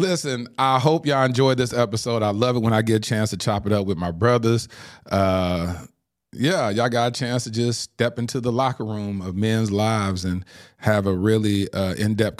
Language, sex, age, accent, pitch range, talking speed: English, male, 40-59, American, 95-120 Hz, 215 wpm